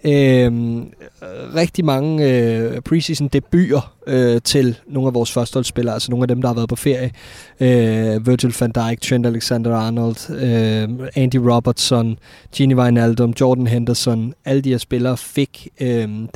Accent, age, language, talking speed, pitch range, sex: native, 20-39, Danish, 145 wpm, 120-145 Hz, male